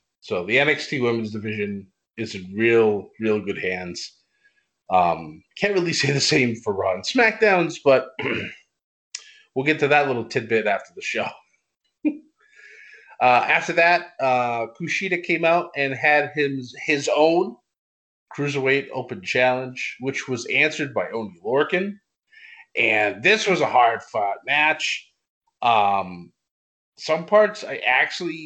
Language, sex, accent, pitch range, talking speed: English, male, American, 120-175 Hz, 135 wpm